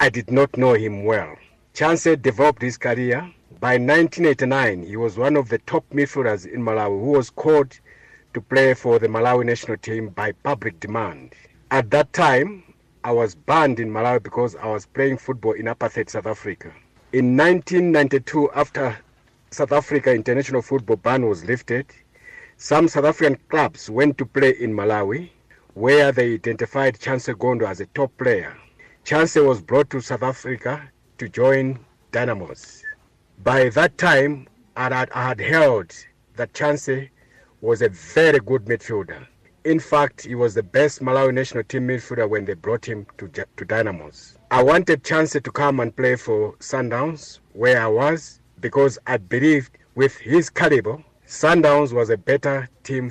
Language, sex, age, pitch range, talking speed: English, male, 50-69, 120-145 Hz, 160 wpm